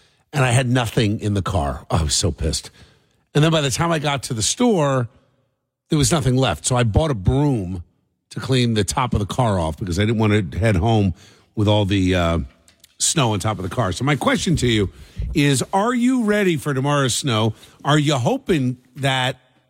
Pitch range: 105-145 Hz